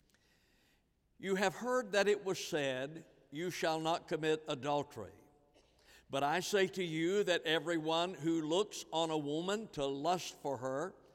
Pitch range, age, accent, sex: 150-185 Hz, 60-79, American, male